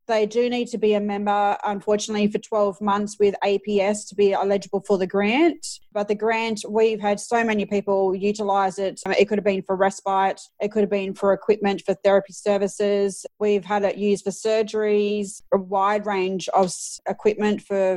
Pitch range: 195-215 Hz